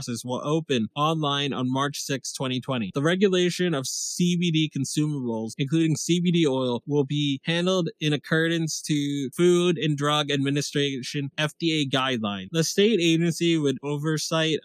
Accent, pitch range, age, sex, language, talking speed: American, 125-160 Hz, 20-39, male, English, 130 wpm